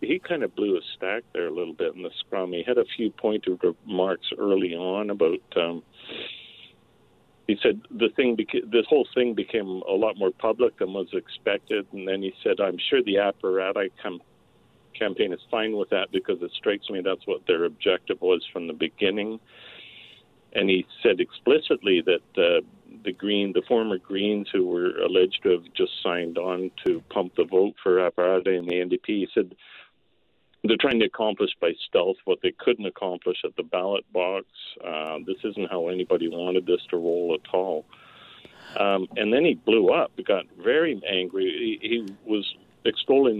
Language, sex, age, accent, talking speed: English, male, 60-79, American, 185 wpm